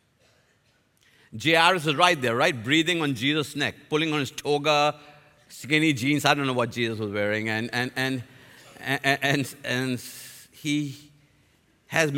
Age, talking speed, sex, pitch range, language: 50-69, 155 wpm, male, 145-215 Hz, English